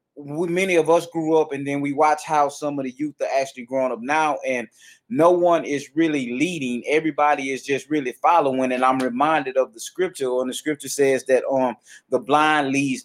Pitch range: 130-155 Hz